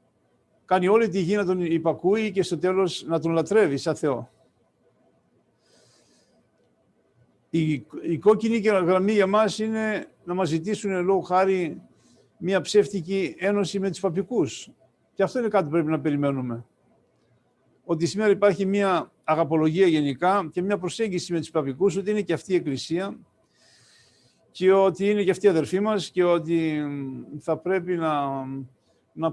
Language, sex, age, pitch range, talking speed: Greek, male, 50-69, 160-195 Hz, 145 wpm